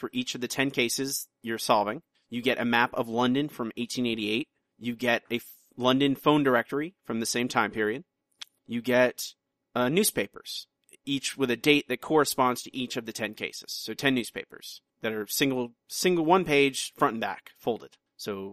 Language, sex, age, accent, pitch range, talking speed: English, male, 30-49, American, 115-145 Hz, 190 wpm